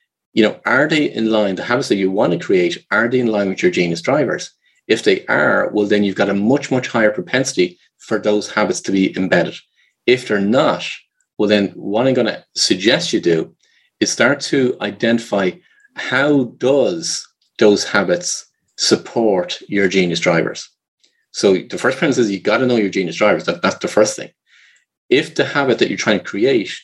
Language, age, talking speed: English, 30-49, 195 wpm